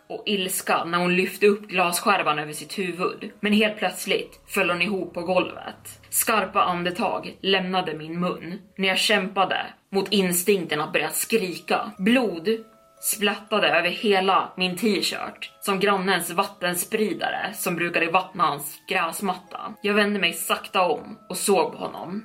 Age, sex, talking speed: 20-39, female, 145 wpm